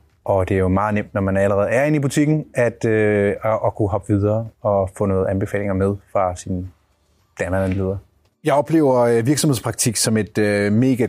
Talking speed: 195 wpm